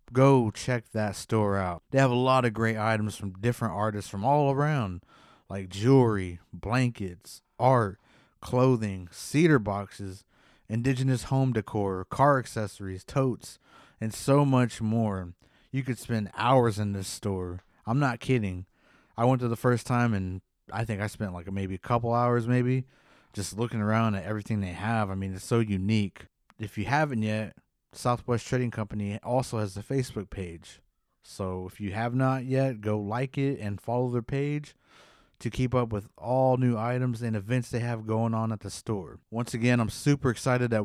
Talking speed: 180 wpm